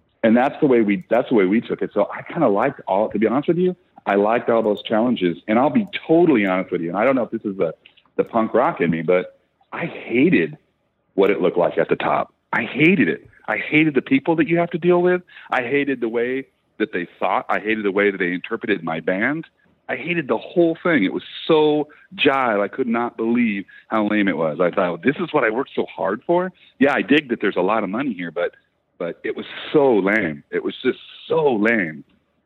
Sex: male